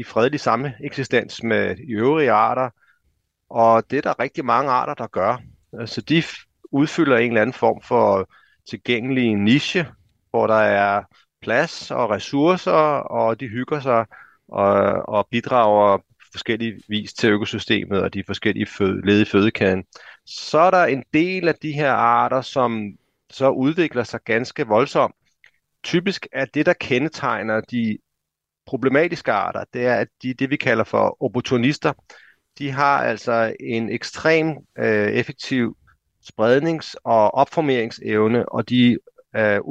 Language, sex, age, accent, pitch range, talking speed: Danish, male, 30-49, native, 110-135 Hz, 140 wpm